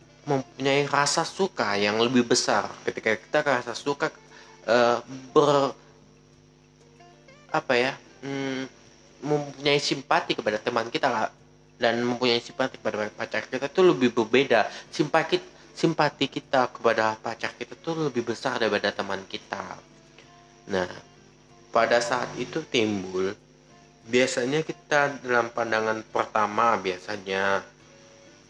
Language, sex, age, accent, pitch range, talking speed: Indonesian, male, 30-49, native, 100-130 Hz, 110 wpm